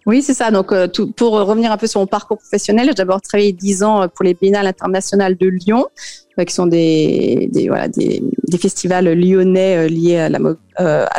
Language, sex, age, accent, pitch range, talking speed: French, female, 30-49, French, 180-210 Hz, 205 wpm